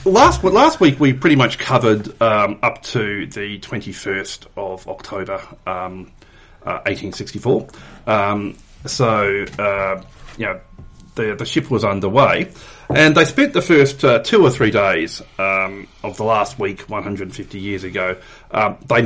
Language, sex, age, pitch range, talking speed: English, male, 40-59, 100-140 Hz, 155 wpm